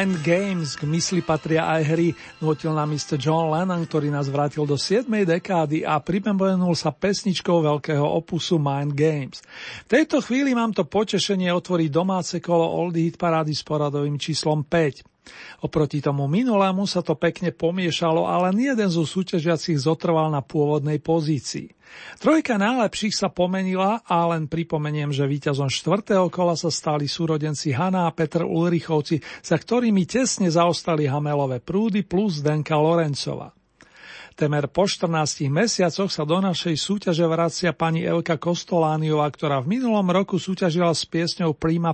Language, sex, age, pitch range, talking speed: Slovak, male, 40-59, 150-185 Hz, 145 wpm